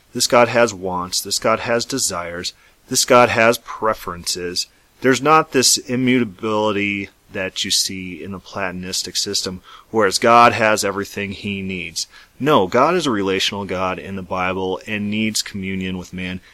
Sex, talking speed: male, 155 wpm